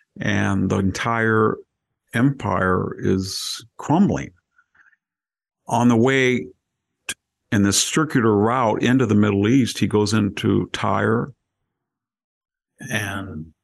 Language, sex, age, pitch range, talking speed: English, male, 50-69, 100-125 Hz, 95 wpm